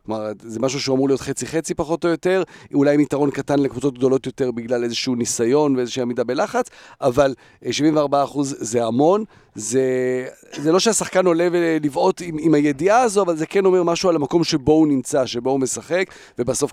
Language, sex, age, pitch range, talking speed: Hebrew, male, 40-59, 120-160 Hz, 185 wpm